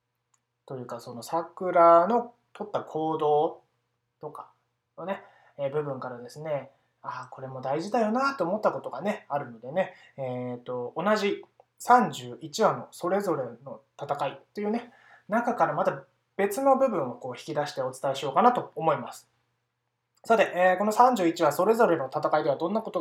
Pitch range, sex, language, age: 125-185 Hz, male, Japanese, 20-39